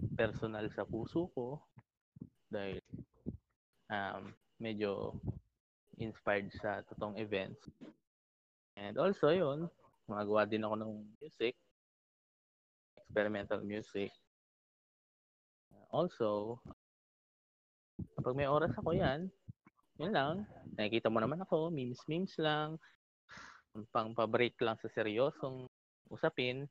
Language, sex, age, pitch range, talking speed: Filipino, male, 20-39, 105-135 Hz, 90 wpm